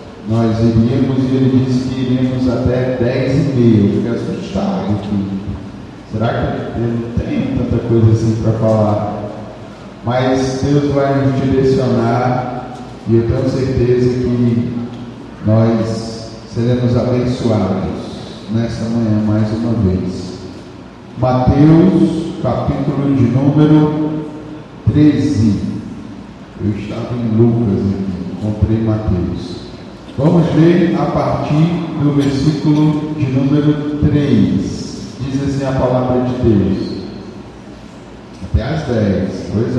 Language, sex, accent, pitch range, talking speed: Portuguese, male, Brazilian, 110-140 Hz, 105 wpm